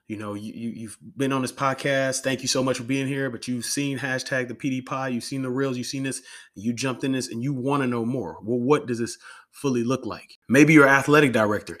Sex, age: male, 30-49